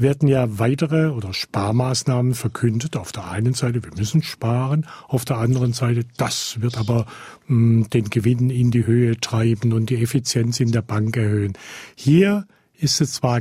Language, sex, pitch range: German, male, 120-145 Hz